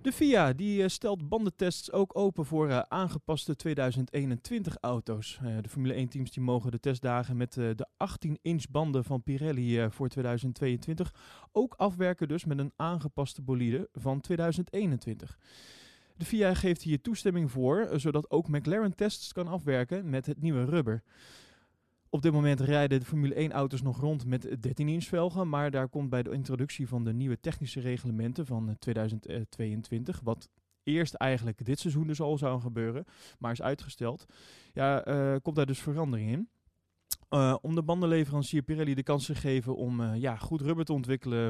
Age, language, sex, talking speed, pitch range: 20-39, Dutch, male, 155 wpm, 125-165 Hz